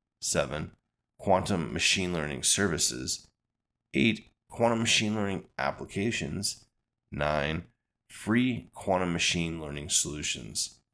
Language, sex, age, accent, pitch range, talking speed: English, male, 30-49, American, 80-110 Hz, 90 wpm